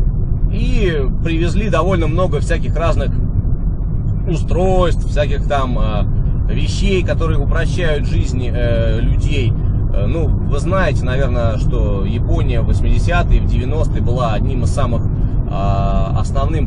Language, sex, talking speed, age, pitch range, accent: Russian, male, 120 wpm, 20-39, 95-115 Hz, native